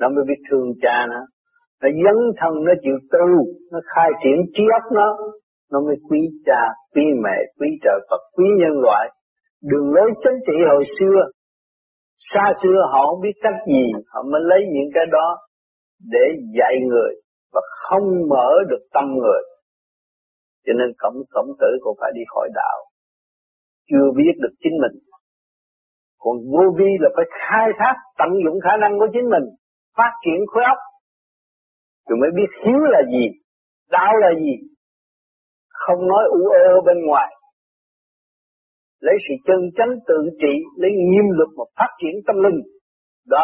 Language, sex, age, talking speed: Vietnamese, male, 50-69, 160 wpm